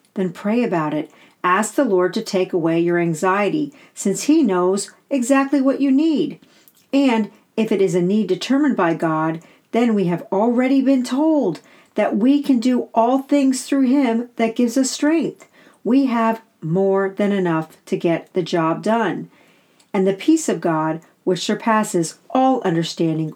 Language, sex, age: English, female, 50-69